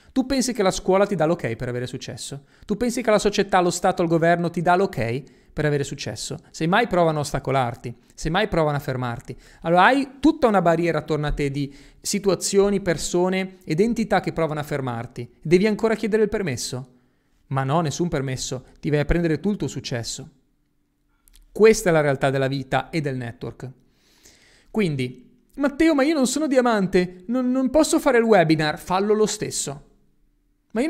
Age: 30-49